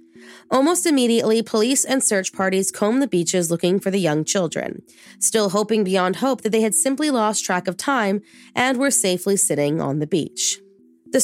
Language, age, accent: English, 20-39, American